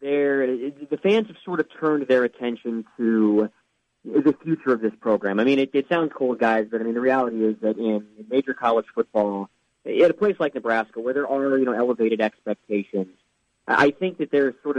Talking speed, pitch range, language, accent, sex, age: 205 wpm, 110-140 Hz, English, American, male, 30-49